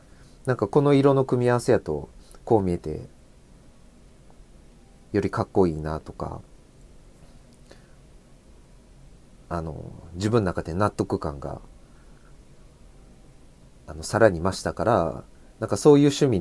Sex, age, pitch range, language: male, 30-49, 80-120 Hz, Japanese